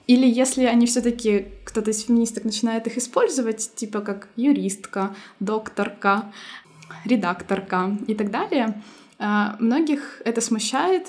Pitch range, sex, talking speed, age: 210-250 Hz, female, 115 wpm, 20-39